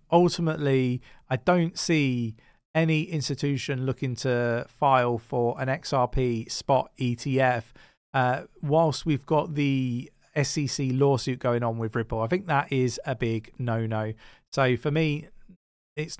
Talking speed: 135 wpm